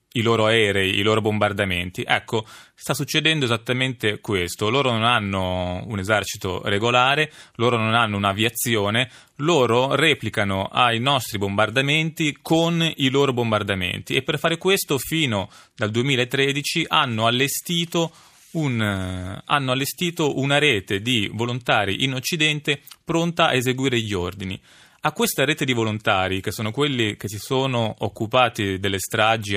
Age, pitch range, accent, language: 30-49, 110-145 Hz, native, Italian